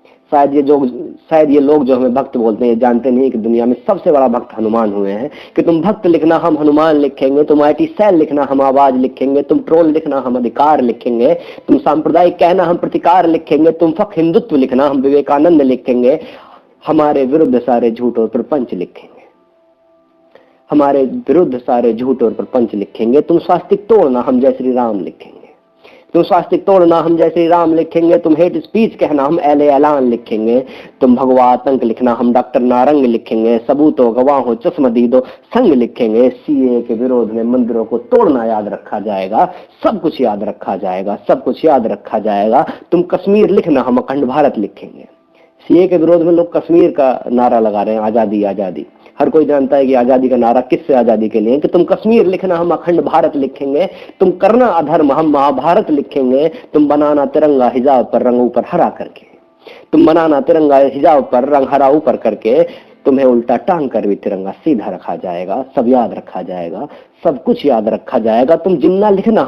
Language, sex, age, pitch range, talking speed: Hindi, female, 30-49, 125-165 Hz, 185 wpm